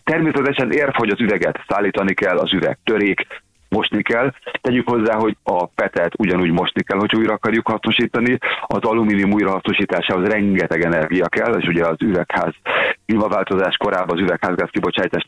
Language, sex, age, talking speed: Hungarian, male, 40-59, 155 wpm